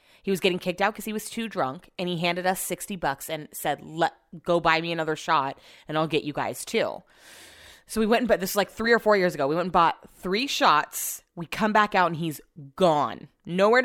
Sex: female